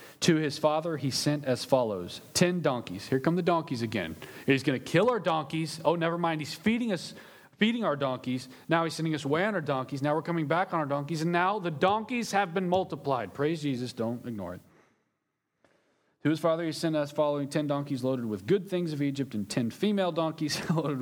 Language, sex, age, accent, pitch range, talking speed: English, male, 40-59, American, 135-180 Hz, 215 wpm